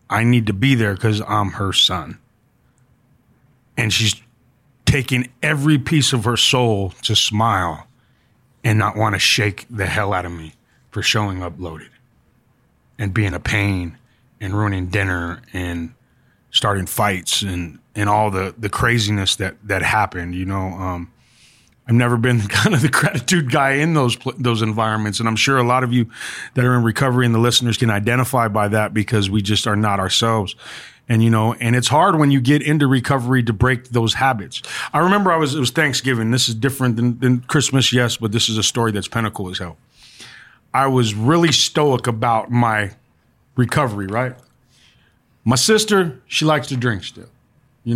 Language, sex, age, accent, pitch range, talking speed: English, male, 30-49, American, 105-130 Hz, 180 wpm